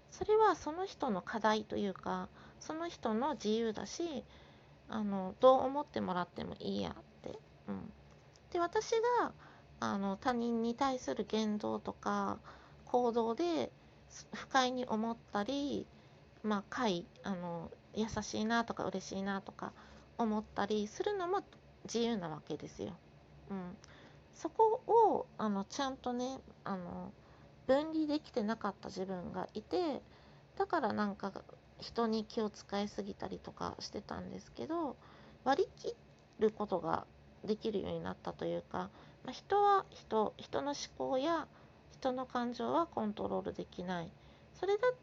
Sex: female